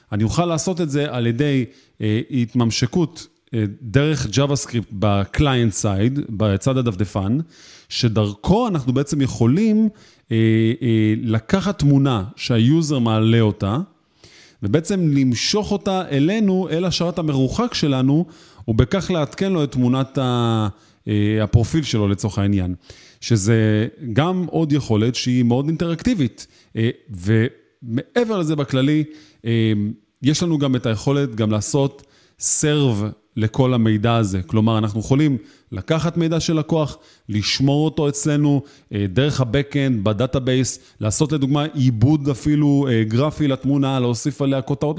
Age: 30-49